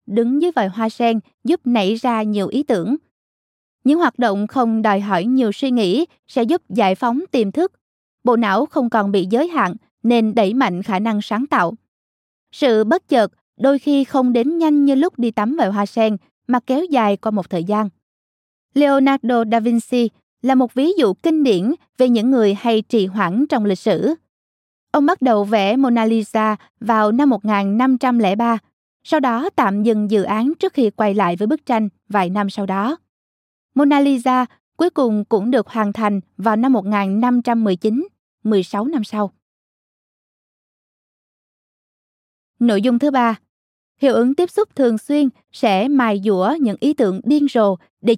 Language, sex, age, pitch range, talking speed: Vietnamese, female, 20-39, 210-270 Hz, 175 wpm